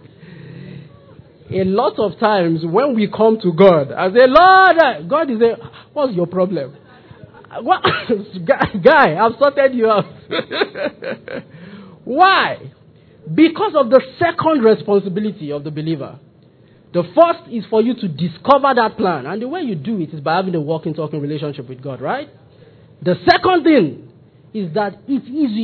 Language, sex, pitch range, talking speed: English, male, 175-275 Hz, 150 wpm